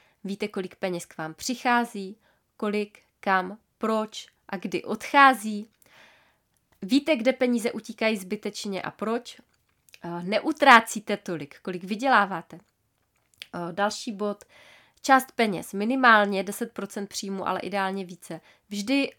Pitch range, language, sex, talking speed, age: 190-235 Hz, Czech, female, 105 wpm, 20-39